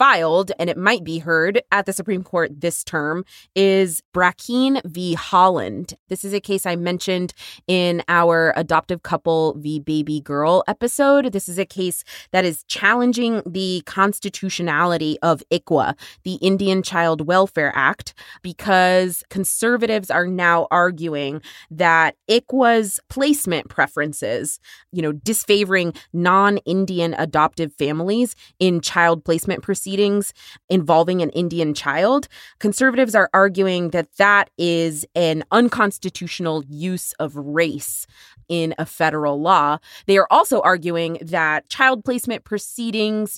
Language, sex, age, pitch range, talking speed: English, female, 20-39, 165-200 Hz, 130 wpm